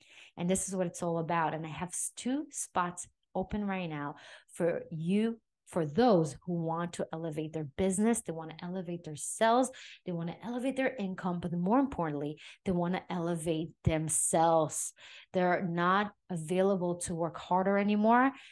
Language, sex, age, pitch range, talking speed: English, female, 30-49, 170-225 Hz, 170 wpm